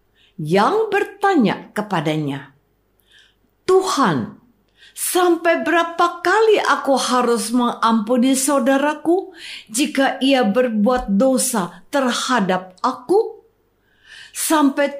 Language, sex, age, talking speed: Indonesian, female, 50-69, 70 wpm